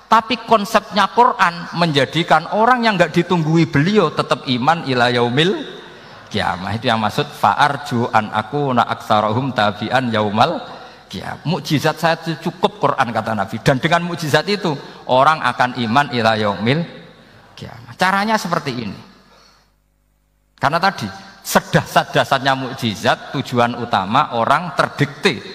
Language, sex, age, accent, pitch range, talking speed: Indonesian, male, 50-69, native, 115-165 Hz, 115 wpm